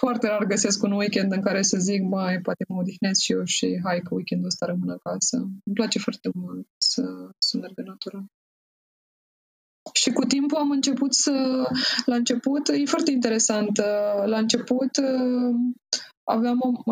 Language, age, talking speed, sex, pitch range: Romanian, 20-39, 155 wpm, female, 195-240 Hz